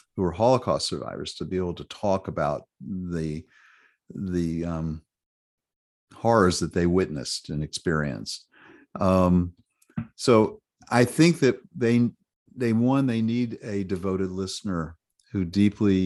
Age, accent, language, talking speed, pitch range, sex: 50-69, American, English, 125 wpm, 85-100 Hz, male